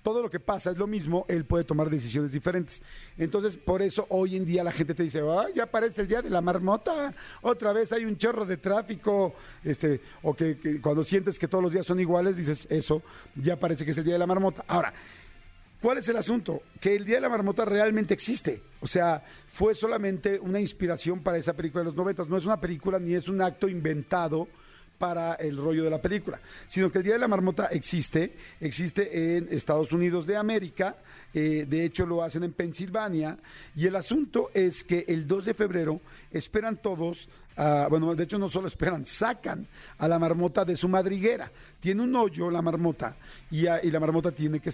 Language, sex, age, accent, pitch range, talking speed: Spanish, male, 50-69, Mexican, 165-205 Hz, 210 wpm